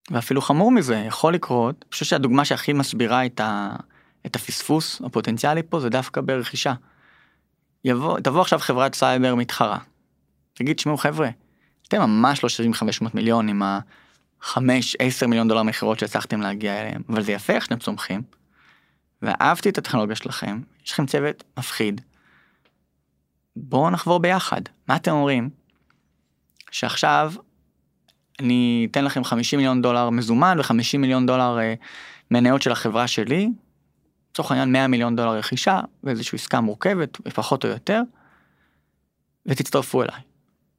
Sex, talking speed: male, 135 wpm